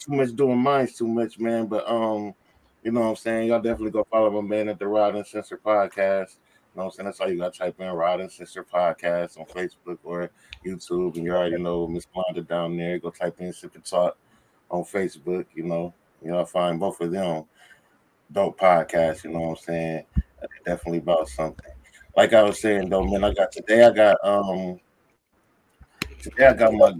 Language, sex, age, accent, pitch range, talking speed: English, male, 20-39, American, 85-105 Hz, 215 wpm